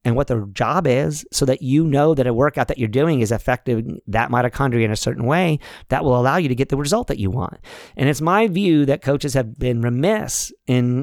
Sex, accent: male, American